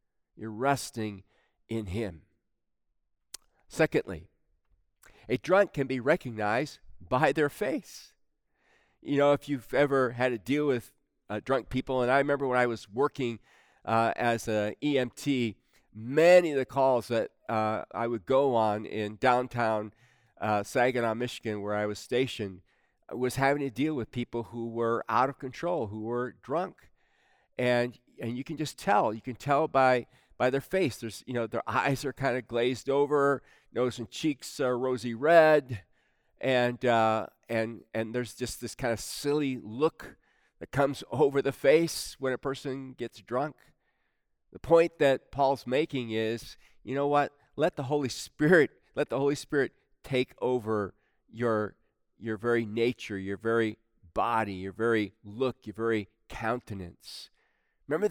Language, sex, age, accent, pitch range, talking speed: English, male, 40-59, American, 110-135 Hz, 155 wpm